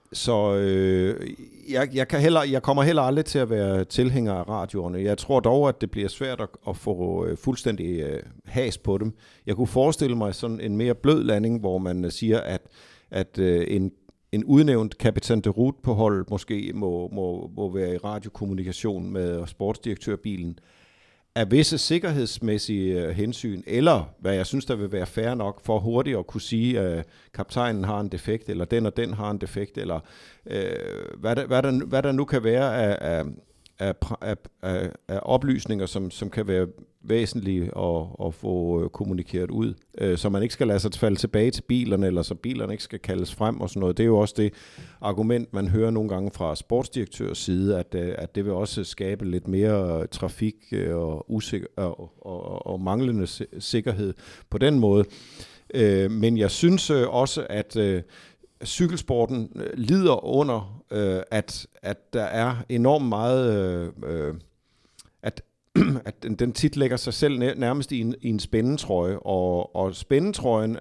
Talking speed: 170 wpm